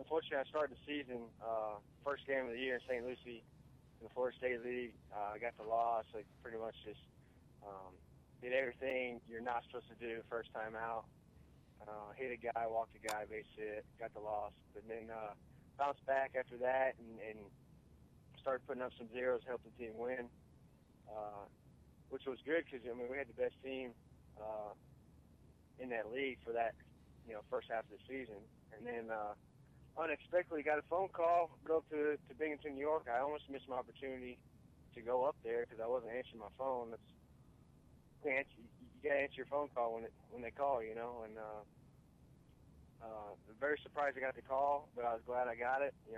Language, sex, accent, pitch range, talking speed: English, male, American, 110-135 Hz, 200 wpm